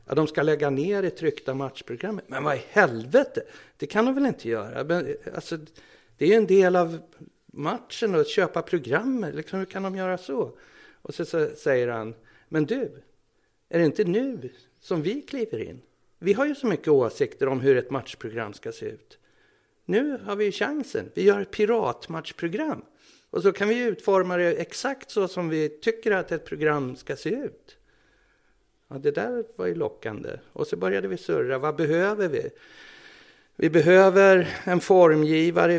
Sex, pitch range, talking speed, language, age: male, 140-210 Hz, 175 wpm, Swedish, 60-79